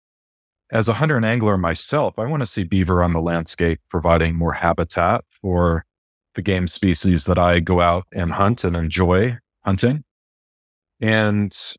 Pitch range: 90-115 Hz